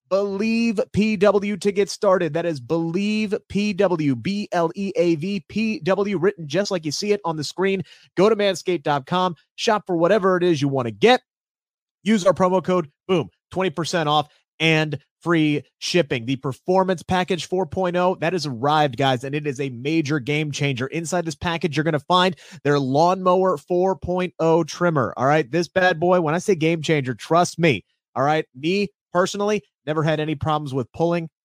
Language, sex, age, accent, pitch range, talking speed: English, male, 30-49, American, 145-180 Hz, 180 wpm